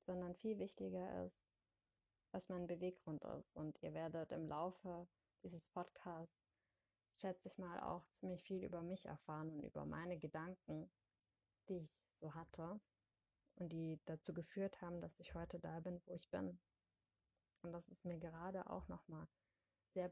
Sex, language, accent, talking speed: female, German, German, 160 wpm